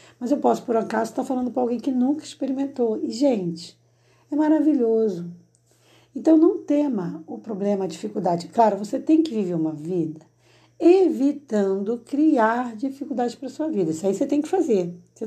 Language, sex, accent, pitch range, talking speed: Portuguese, female, Brazilian, 175-275 Hz, 175 wpm